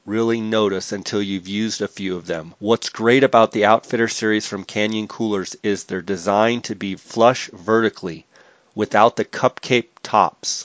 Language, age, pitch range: English, 30-49, 105-120 Hz